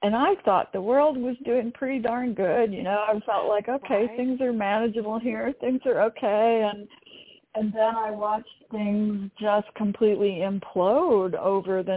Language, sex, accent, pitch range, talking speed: English, female, American, 190-230 Hz, 170 wpm